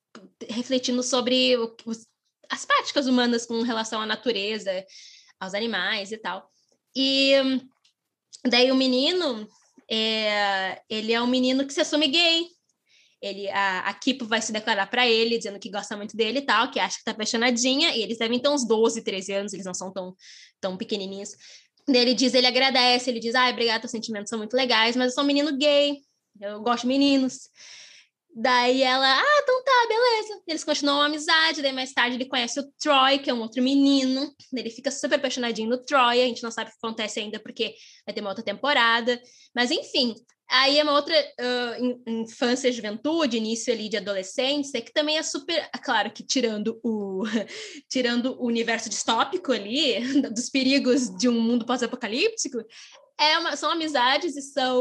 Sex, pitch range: female, 230-280 Hz